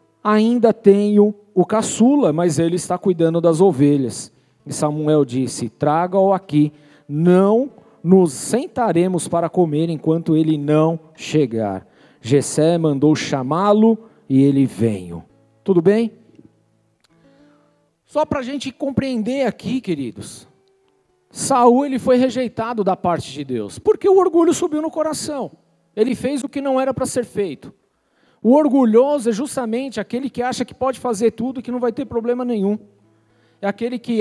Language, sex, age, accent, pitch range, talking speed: Portuguese, male, 50-69, Brazilian, 165-245 Hz, 145 wpm